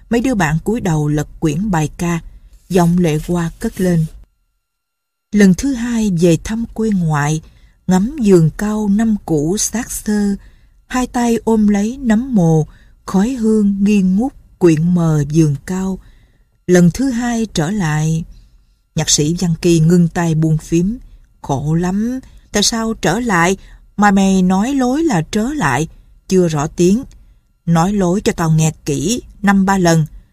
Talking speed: 160 wpm